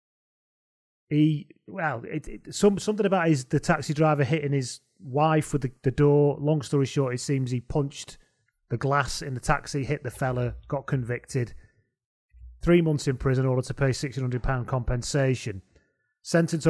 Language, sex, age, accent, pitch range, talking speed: English, male, 30-49, British, 125-155 Hz, 165 wpm